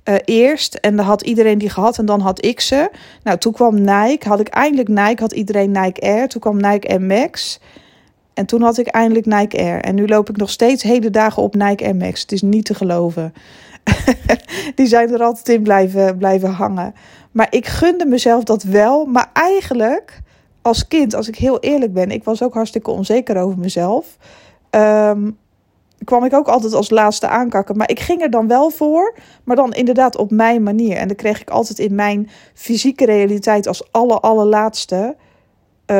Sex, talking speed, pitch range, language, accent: female, 190 wpm, 200-240 Hz, Dutch, Dutch